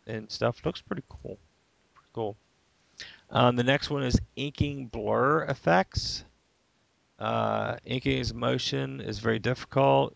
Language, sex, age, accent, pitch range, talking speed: English, male, 40-59, American, 105-125 Hz, 130 wpm